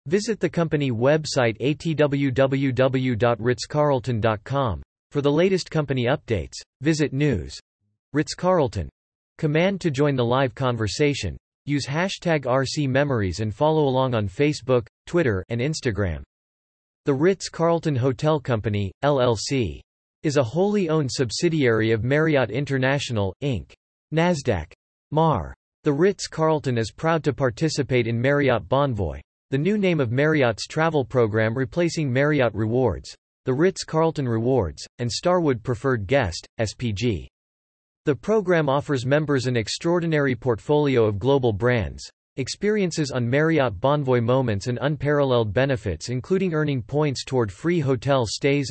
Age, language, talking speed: 40-59, English, 120 wpm